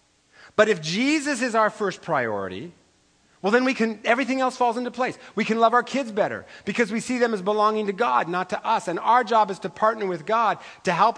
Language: English